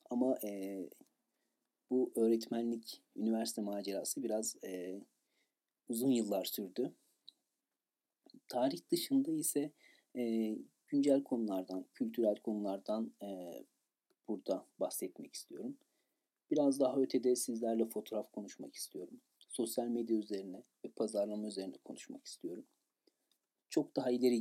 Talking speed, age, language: 100 wpm, 40-59, Turkish